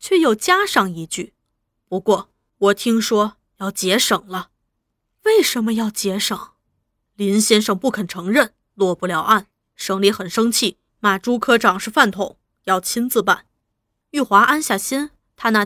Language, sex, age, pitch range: Chinese, female, 20-39, 195-245 Hz